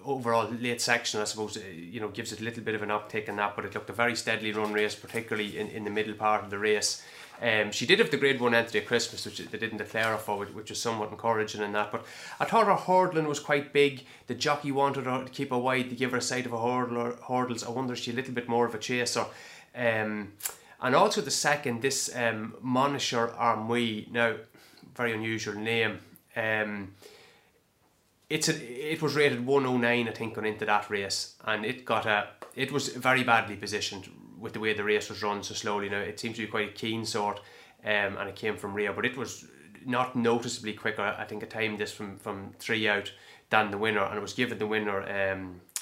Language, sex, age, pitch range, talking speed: English, male, 20-39, 105-120 Hz, 235 wpm